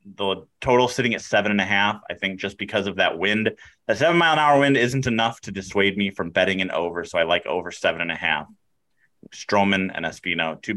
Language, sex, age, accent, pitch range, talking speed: English, male, 30-49, American, 95-130 Hz, 235 wpm